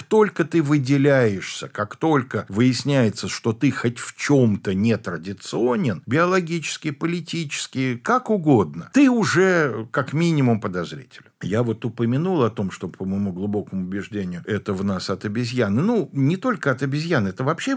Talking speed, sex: 150 wpm, male